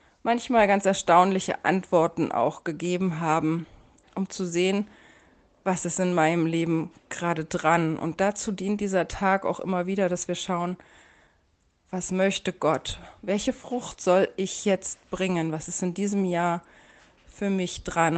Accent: German